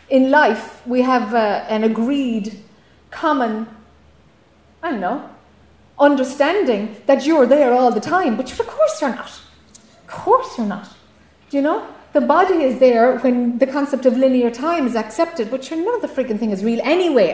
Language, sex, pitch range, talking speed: English, female, 220-275 Hz, 180 wpm